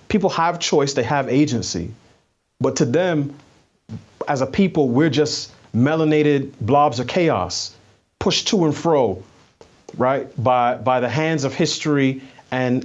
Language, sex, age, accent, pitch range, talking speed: English, male, 30-49, American, 120-150 Hz, 140 wpm